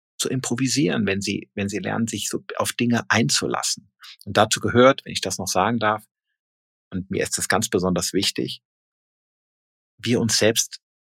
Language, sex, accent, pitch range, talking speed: German, male, German, 90-115 Hz, 170 wpm